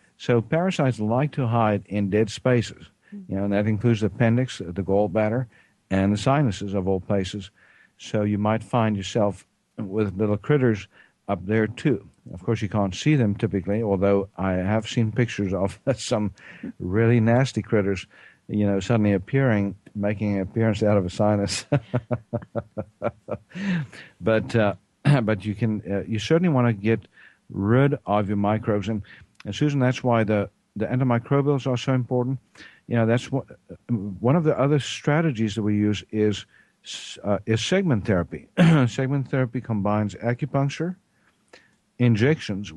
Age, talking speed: 50-69, 155 wpm